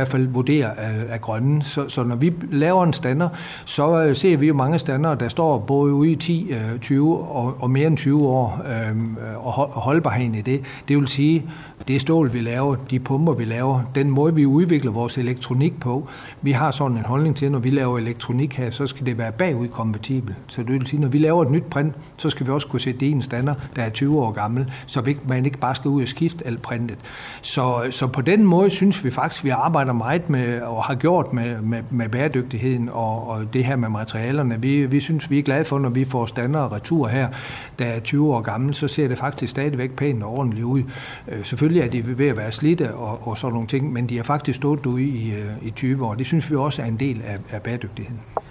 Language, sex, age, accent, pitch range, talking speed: Danish, male, 60-79, native, 120-145 Hz, 240 wpm